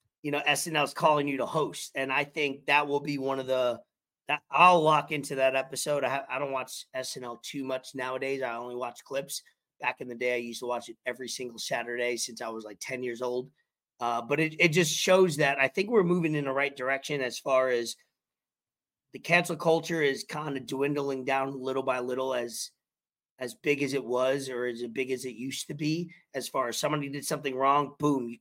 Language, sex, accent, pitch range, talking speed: English, male, American, 130-150 Hz, 225 wpm